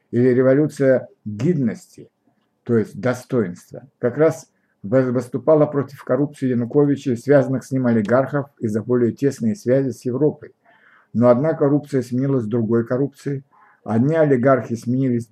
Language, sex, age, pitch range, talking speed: Russian, male, 60-79, 120-145 Hz, 120 wpm